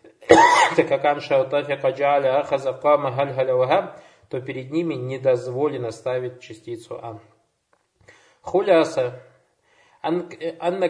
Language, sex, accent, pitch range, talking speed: Russian, male, native, 140-175 Hz, 70 wpm